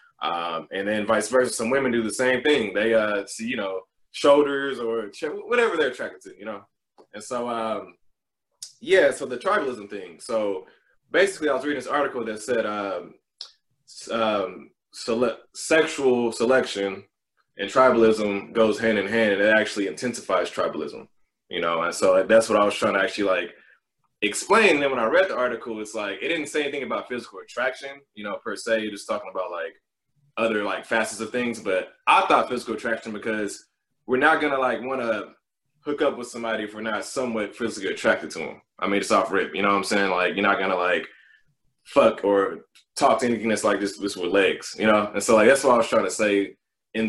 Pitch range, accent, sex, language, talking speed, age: 100-130 Hz, American, male, English, 210 wpm, 20-39